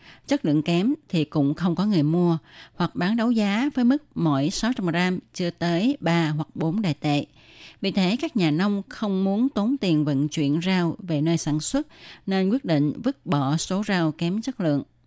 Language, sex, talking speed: Vietnamese, female, 205 wpm